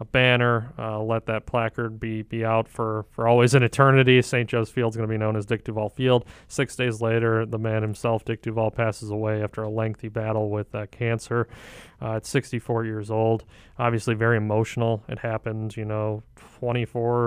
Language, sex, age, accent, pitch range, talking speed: English, male, 30-49, American, 110-120 Hz, 195 wpm